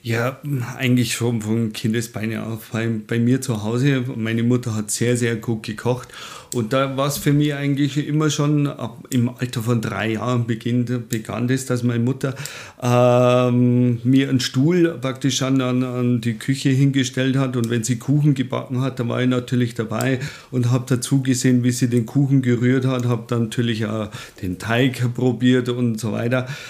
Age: 40-59